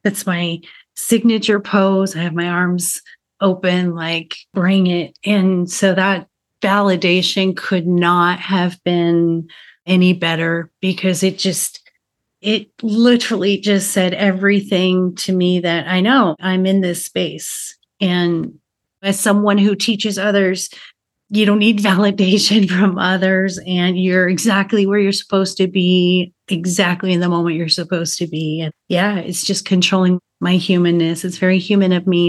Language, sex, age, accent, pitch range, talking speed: English, female, 30-49, American, 180-200 Hz, 145 wpm